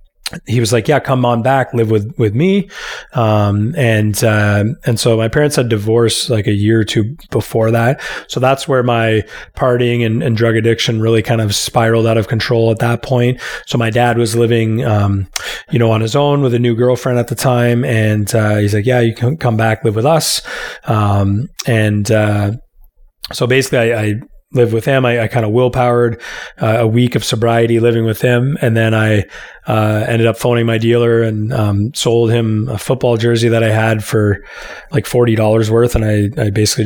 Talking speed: 205 wpm